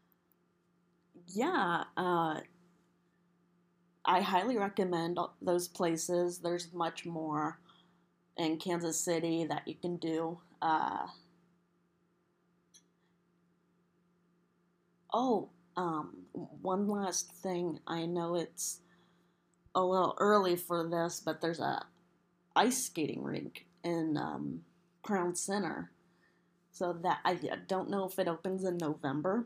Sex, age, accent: female, 20-39, American